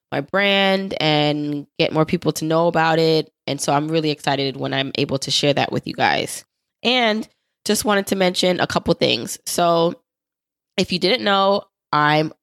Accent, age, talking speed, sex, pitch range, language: American, 20-39, 185 wpm, female, 155-185 Hz, English